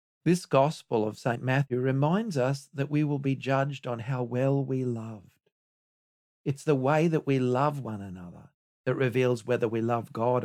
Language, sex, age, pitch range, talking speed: English, male, 50-69, 110-145 Hz, 180 wpm